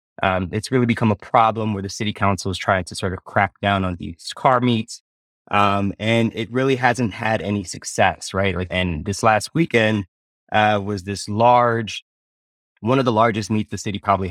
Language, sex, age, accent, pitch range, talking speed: English, male, 20-39, American, 90-110 Hz, 195 wpm